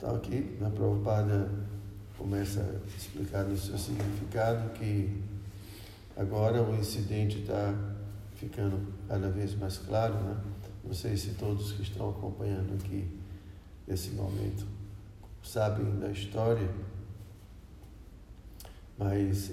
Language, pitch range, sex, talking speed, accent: Portuguese, 100-105 Hz, male, 110 wpm, Brazilian